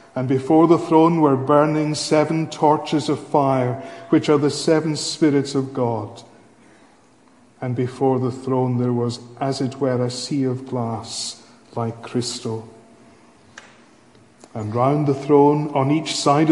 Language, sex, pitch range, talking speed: English, male, 130-150 Hz, 140 wpm